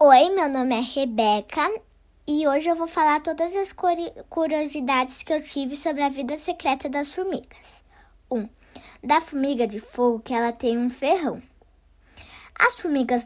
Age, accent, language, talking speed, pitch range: 10-29, Brazilian, Portuguese, 160 wpm, 255-320 Hz